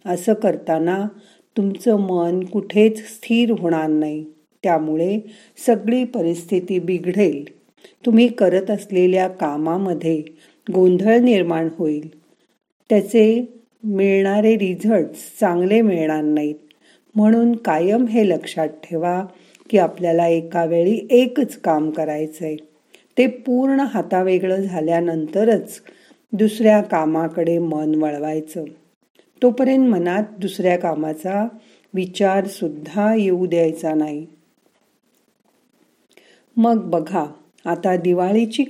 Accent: native